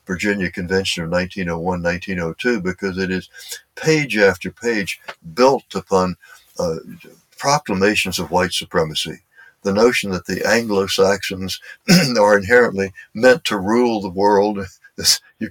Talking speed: 115 wpm